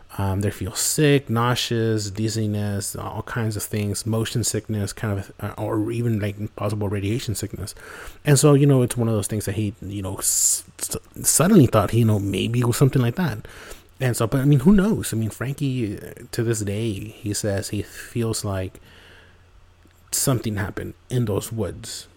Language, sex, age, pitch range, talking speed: English, male, 30-49, 100-120 Hz, 180 wpm